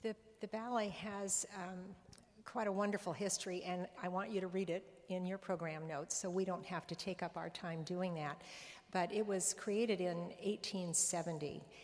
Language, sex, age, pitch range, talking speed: English, female, 60-79, 170-195 Hz, 190 wpm